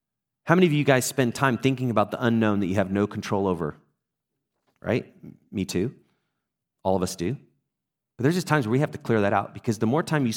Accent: American